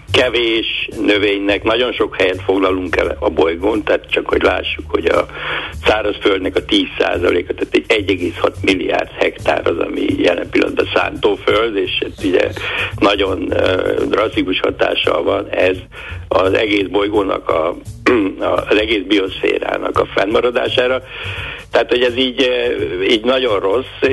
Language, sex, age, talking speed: Hungarian, male, 60-79, 130 wpm